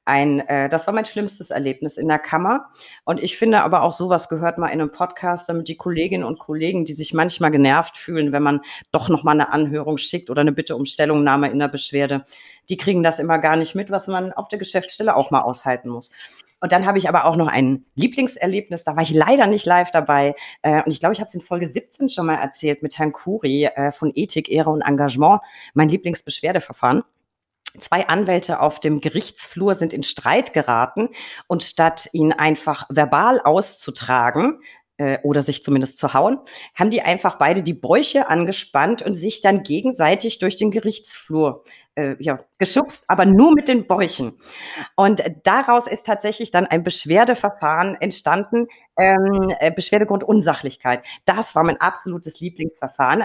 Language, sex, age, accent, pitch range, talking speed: German, female, 40-59, German, 150-195 Hz, 180 wpm